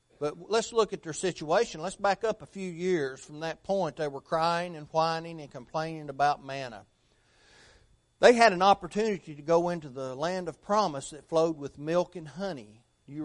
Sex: male